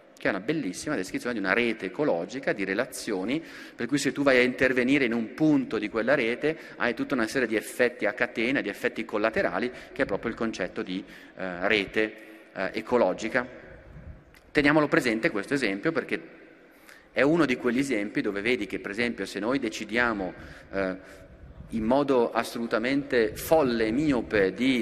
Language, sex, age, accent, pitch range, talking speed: Italian, male, 30-49, native, 100-135 Hz, 170 wpm